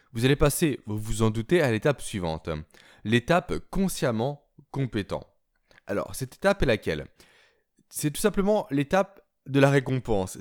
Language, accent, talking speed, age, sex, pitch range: French, French, 145 wpm, 20-39, male, 120-165 Hz